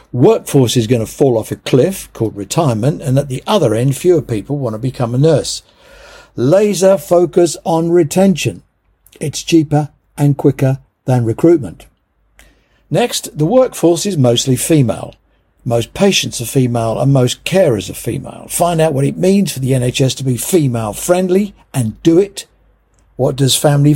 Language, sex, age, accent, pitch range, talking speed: English, male, 60-79, British, 120-155 Hz, 165 wpm